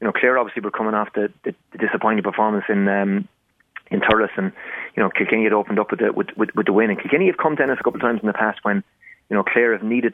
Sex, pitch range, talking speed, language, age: male, 105-120 Hz, 285 wpm, English, 30-49